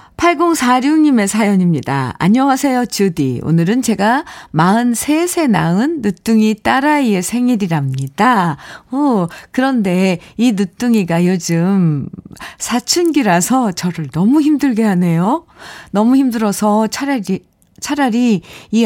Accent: native